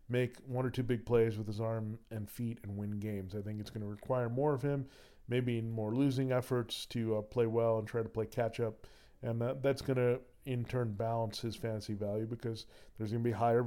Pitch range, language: 110-125 Hz, English